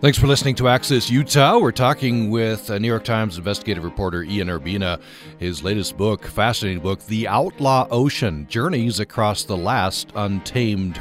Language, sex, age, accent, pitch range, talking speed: English, male, 40-59, American, 85-110 Hz, 160 wpm